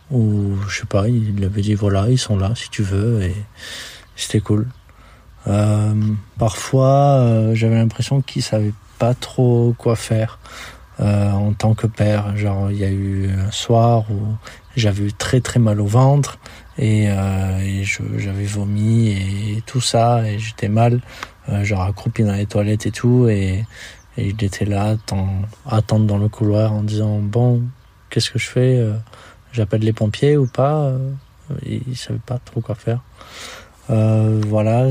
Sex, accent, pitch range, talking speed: male, French, 105-115 Hz, 170 wpm